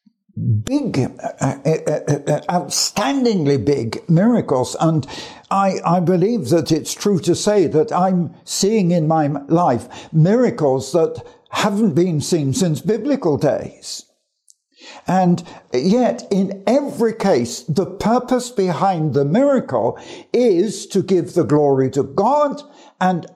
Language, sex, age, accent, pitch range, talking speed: English, male, 60-79, British, 140-205 Hz, 125 wpm